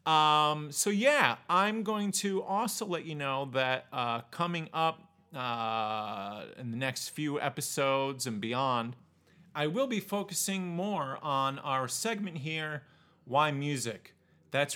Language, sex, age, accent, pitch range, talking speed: English, male, 30-49, American, 115-155 Hz, 140 wpm